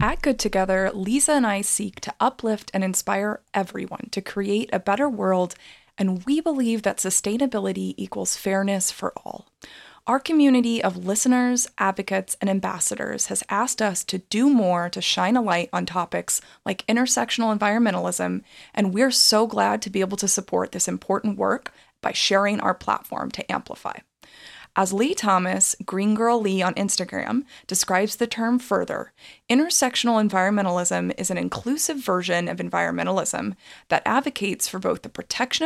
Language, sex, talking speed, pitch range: English, female, 155 wpm, 185-245 Hz